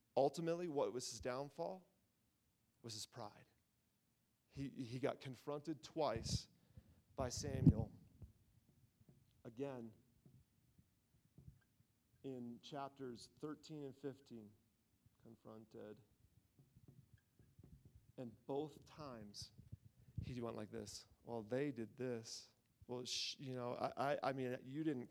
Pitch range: 110-130 Hz